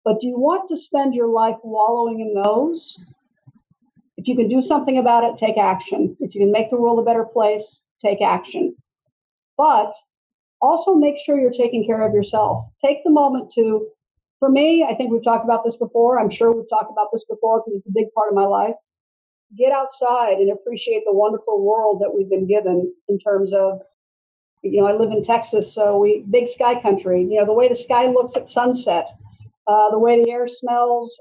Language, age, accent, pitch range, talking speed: English, 50-69, American, 210-245 Hz, 210 wpm